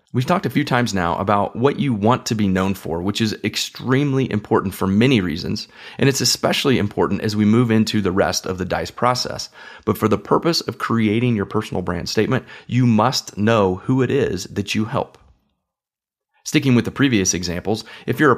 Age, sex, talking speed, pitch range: 30-49, male, 200 wpm, 105-135 Hz